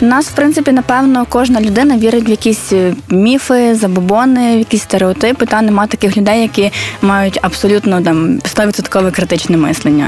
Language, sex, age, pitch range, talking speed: Ukrainian, female, 20-39, 205-245 Hz, 150 wpm